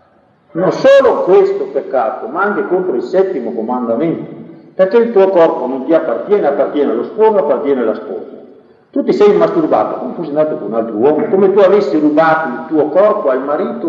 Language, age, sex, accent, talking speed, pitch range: Italian, 50-69, male, native, 185 wpm, 160-260 Hz